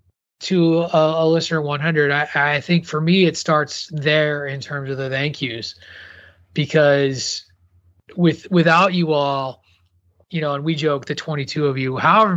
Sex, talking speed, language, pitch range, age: male, 165 wpm, English, 130-160 Hz, 20-39